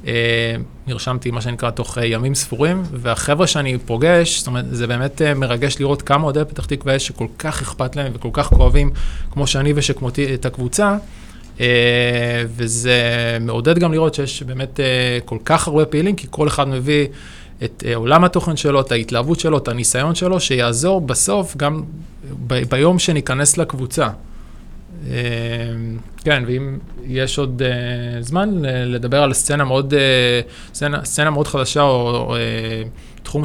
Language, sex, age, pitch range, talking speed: Hebrew, male, 20-39, 120-150 Hz, 160 wpm